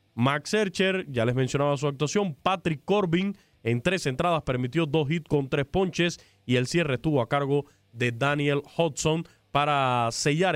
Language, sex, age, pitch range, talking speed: Spanish, male, 20-39, 130-170 Hz, 165 wpm